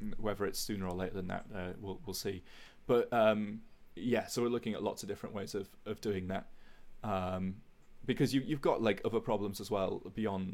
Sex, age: male, 20-39